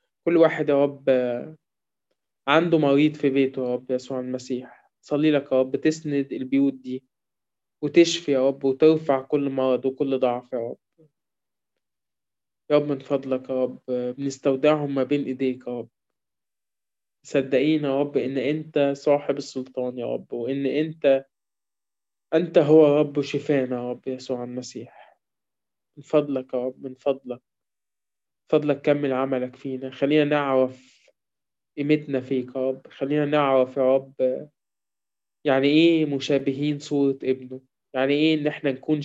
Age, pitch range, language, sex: 20-39, 130-145 Hz, Arabic, male